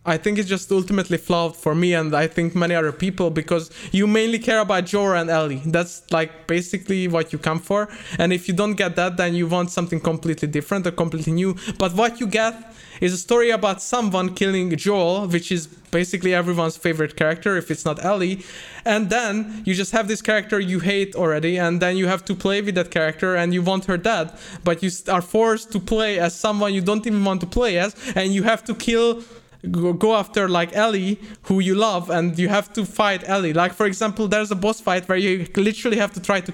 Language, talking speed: English, 225 wpm